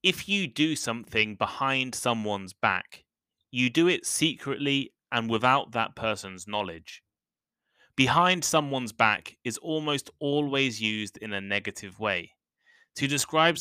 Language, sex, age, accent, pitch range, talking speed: English, male, 10-29, British, 100-140 Hz, 130 wpm